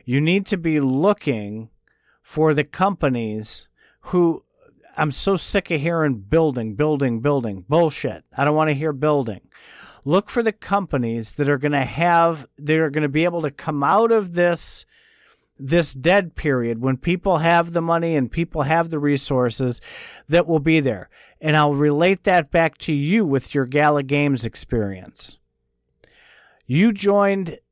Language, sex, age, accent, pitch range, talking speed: English, male, 50-69, American, 140-175 Hz, 160 wpm